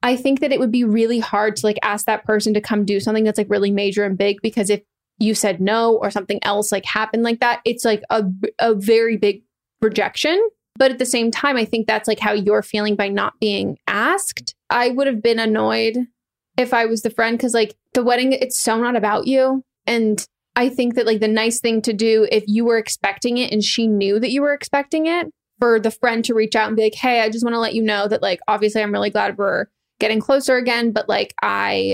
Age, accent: 20-39, American